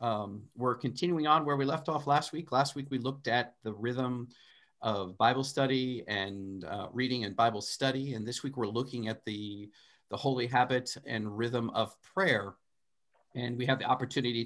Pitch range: 110-135 Hz